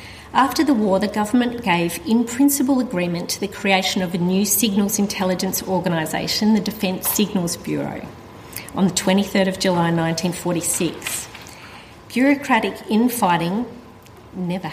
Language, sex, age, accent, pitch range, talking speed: English, female, 40-59, Australian, 175-230 Hz, 125 wpm